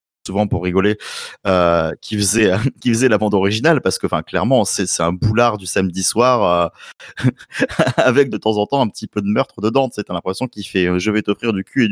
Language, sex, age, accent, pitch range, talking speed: French, male, 20-39, French, 95-120 Hz, 230 wpm